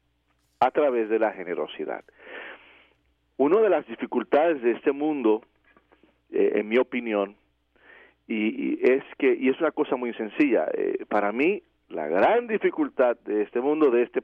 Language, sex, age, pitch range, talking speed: English, male, 50-69, 105-155 Hz, 155 wpm